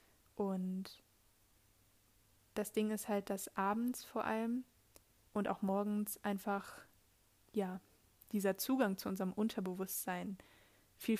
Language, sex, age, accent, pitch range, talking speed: German, female, 20-39, German, 190-210 Hz, 105 wpm